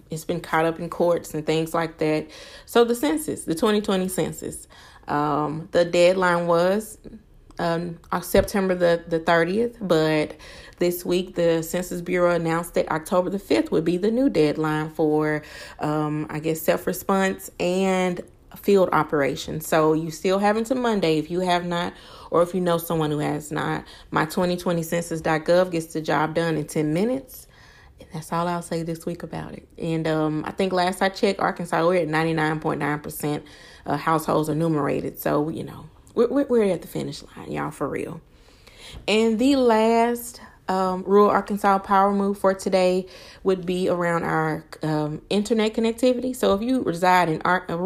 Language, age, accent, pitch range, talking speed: English, 30-49, American, 160-195 Hz, 170 wpm